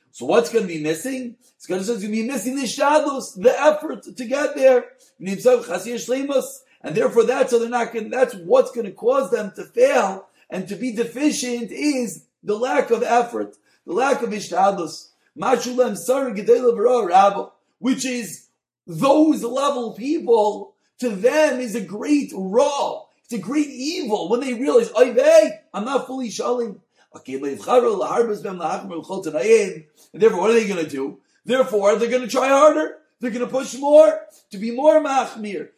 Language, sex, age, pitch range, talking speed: English, male, 40-59, 210-275 Hz, 155 wpm